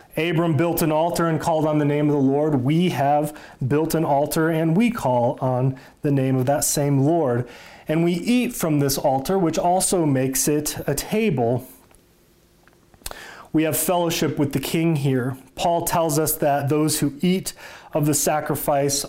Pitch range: 135-160 Hz